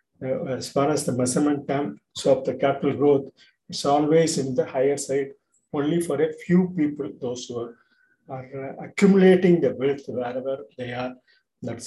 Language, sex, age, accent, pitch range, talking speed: Tamil, male, 50-69, native, 125-165 Hz, 160 wpm